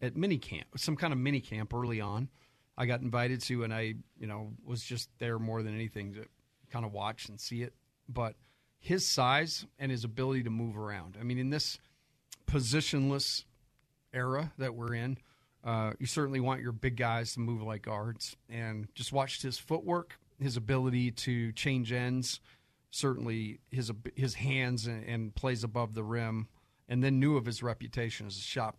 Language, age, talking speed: English, 40-59, 185 wpm